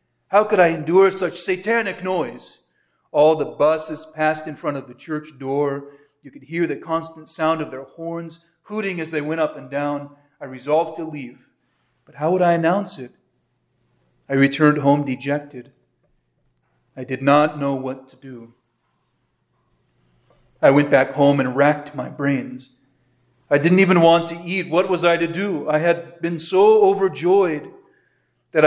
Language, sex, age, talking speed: English, male, 40-59, 165 wpm